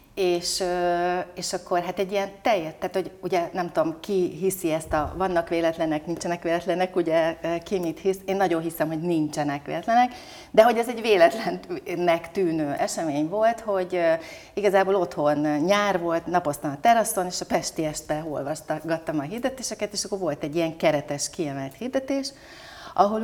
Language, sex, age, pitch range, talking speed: Hungarian, female, 30-49, 155-210 Hz, 160 wpm